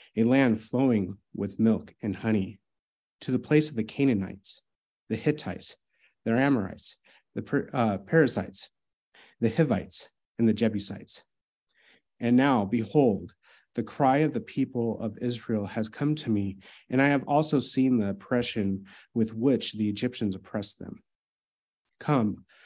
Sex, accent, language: male, American, English